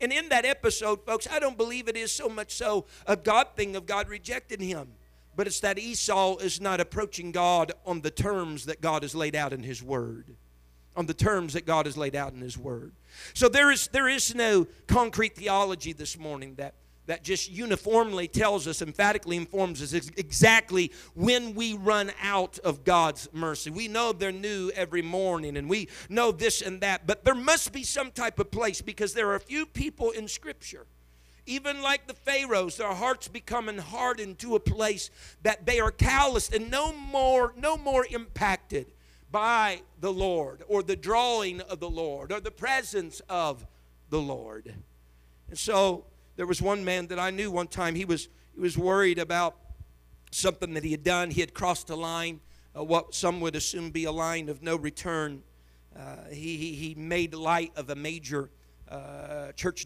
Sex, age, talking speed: male, 50-69, 190 wpm